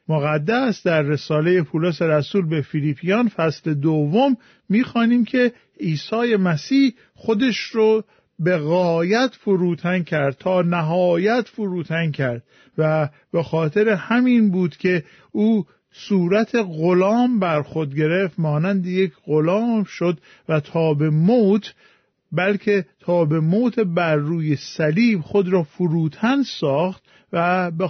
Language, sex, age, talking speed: Persian, male, 50-69, 120 wpm